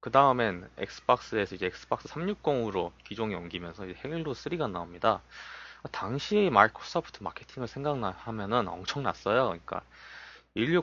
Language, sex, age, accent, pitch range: Korean, male, 20-39, native, 95-140 Hz